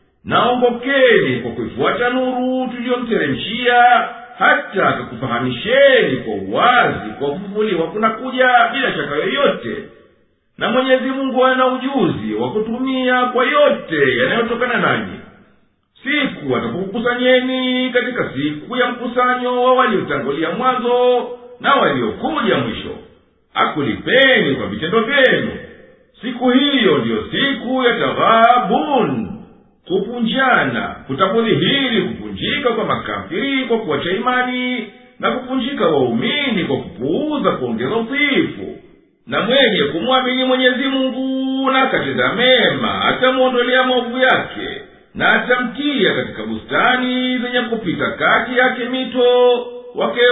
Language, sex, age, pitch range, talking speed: Swahili, male, 50-69, 230-260 Hz, 105 wpm